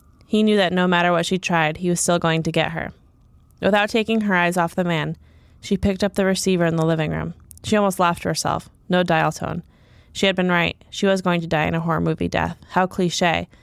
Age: 20-39